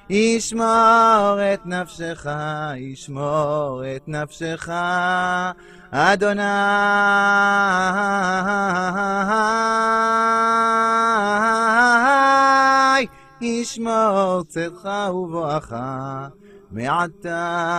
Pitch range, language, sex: 150-205 Hz, Russian, male